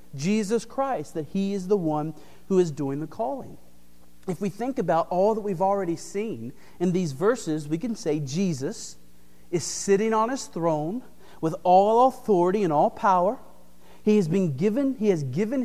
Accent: American